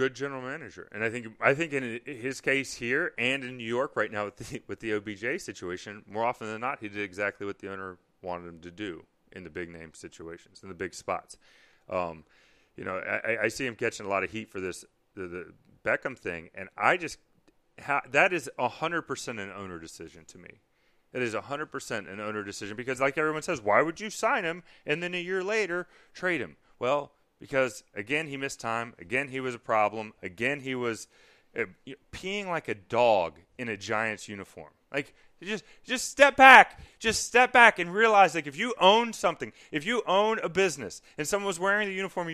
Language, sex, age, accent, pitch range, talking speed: English, male, 30-49, American, 110-170 Hz, 215 wpm